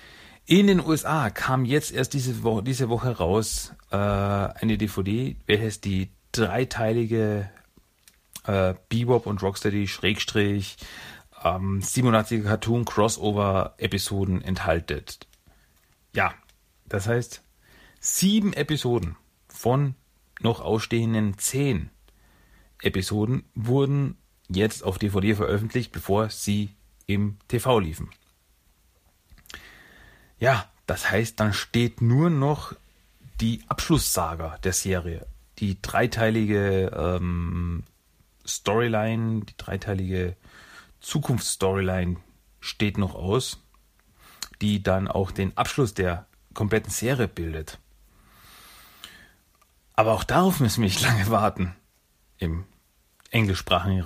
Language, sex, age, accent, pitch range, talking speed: German, male, 40-59, German, 95-115 Hz, 85 wpm